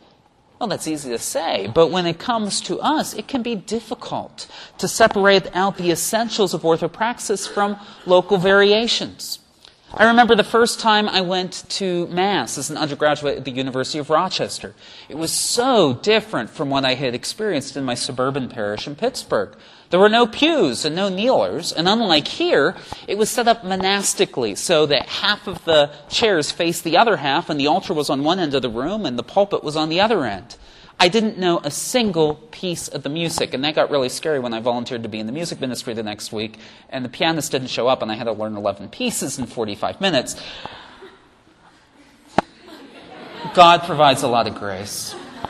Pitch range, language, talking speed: 135-210 Hz, English, 195 wpm